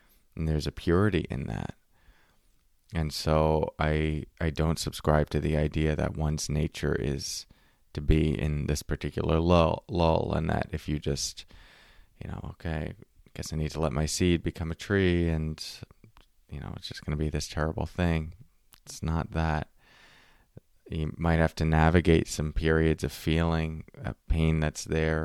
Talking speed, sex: 170 wpm, male